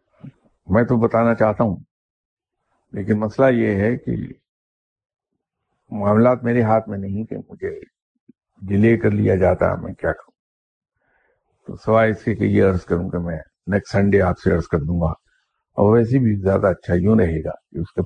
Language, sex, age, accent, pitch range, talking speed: English, male, 50-69, Indian, 90-115 Hz, 160 wpm